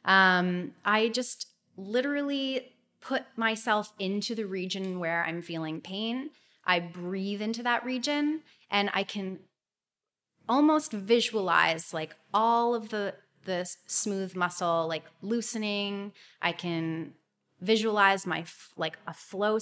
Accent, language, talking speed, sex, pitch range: American, English, 120 wpm, female, 175-220 Hz